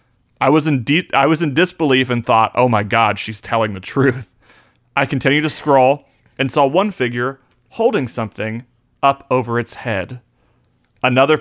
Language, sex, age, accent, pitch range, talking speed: English, male, 30-49, American, 115-140 Hz, 170 wpm